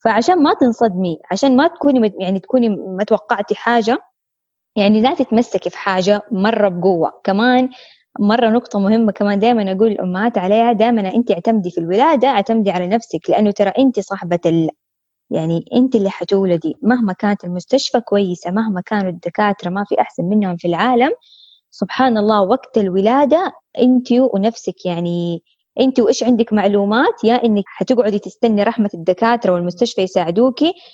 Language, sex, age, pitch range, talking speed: Arabic, female, 20-39, 195-245 Hz, 145 wpm